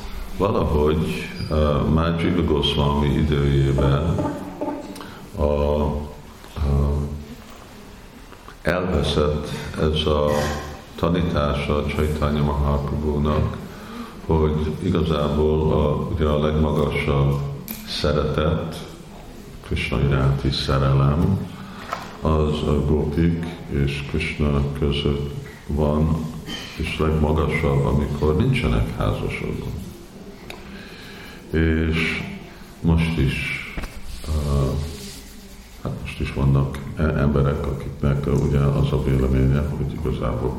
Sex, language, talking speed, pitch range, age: male, Hungarian, 70 wpm, 70-80 Hz, 50-69